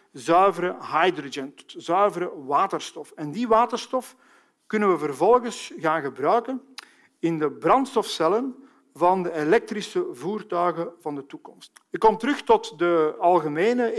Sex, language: male, Dutch